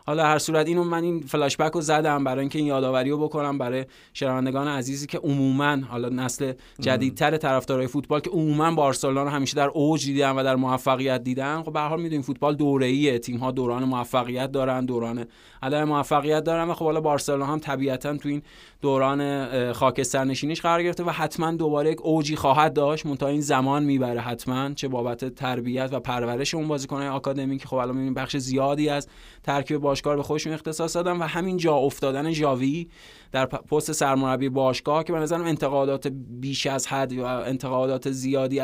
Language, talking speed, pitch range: Persian, 175 wpm, 130-150 Hz